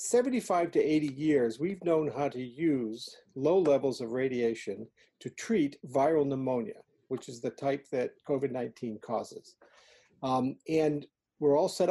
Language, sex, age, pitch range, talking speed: English, male, 50-69, 135-170 Hz, 150 wpm